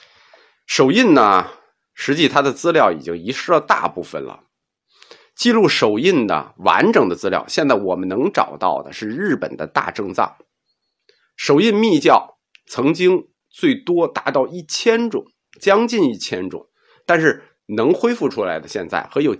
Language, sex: Chinese, male